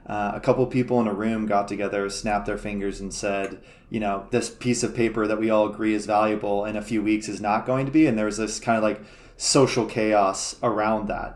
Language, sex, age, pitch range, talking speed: English, male, 20-39, 105-115 Hz, 245 wpm